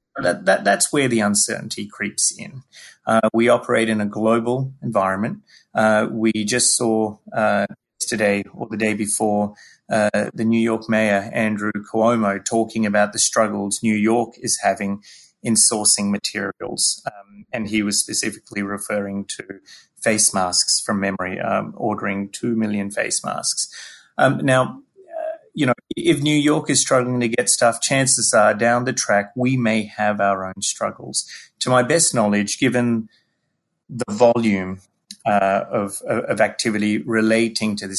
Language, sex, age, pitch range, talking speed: English, male, 30-49, 105-120 Hz, 150 wpm